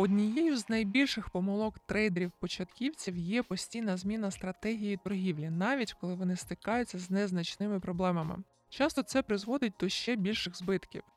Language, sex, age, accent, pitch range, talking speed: Ukrainian, male, 20-39, native, 180-220 Hz, 130 wpm